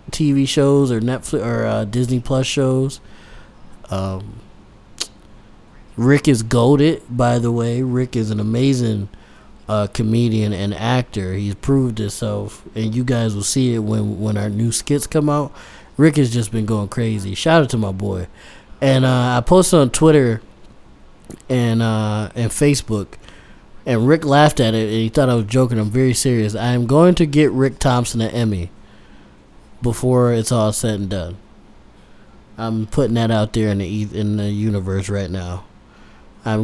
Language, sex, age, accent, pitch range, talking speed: English, male, 20-39, American, 105-135 Hz, 170 wpm